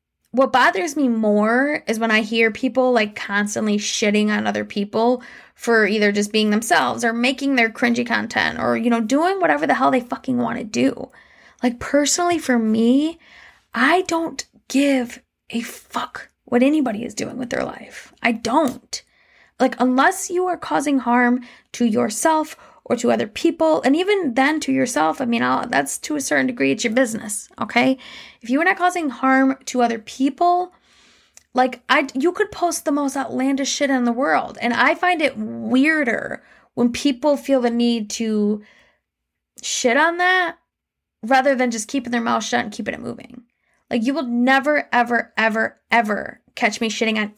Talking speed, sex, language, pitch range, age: 180 wpm, female, English, 230-285 Hz, 10-29